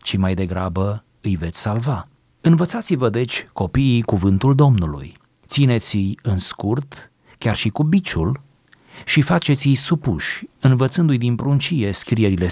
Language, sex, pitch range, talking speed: Romanian, male, 100-135 Hz, 120 wpm